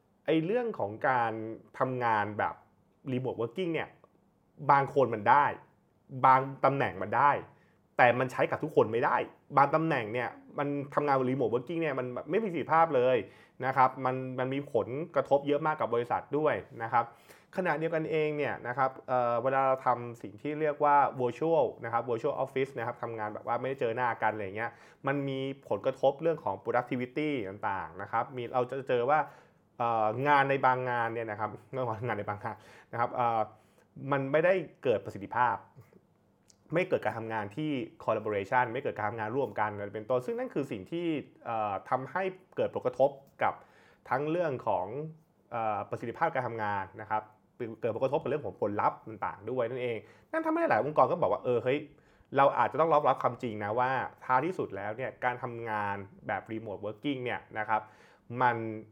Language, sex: Thai, male